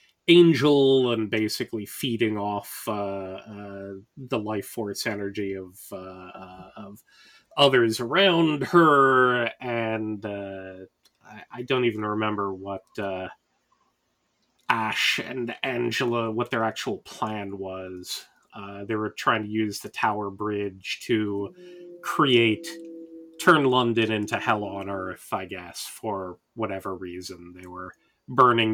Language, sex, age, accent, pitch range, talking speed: English, male, 30-49, American, 100-120 Hz, 125 wpm